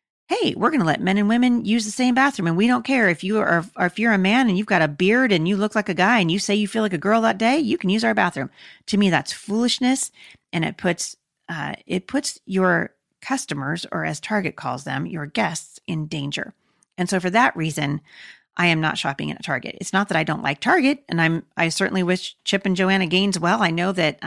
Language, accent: English, American